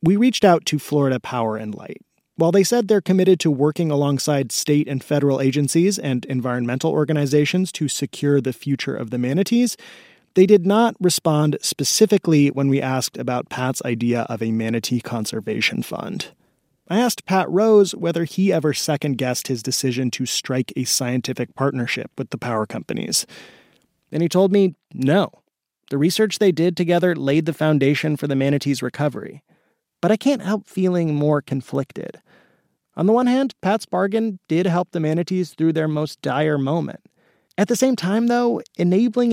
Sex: male